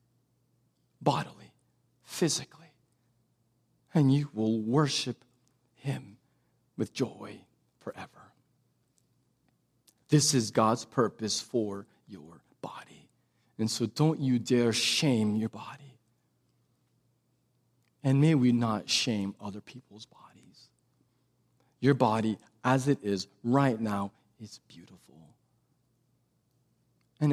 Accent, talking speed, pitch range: American, 95 wpm, 105-125 Hz